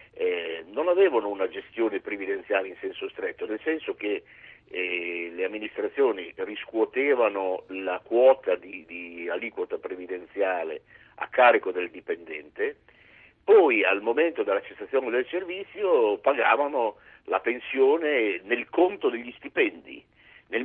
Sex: male